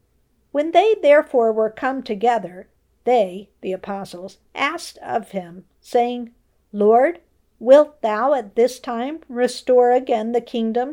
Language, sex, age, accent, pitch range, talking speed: English, female, 50-69, American, 205-265 Hz, 125 wpm